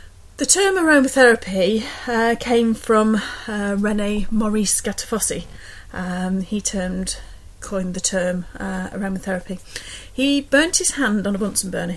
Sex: female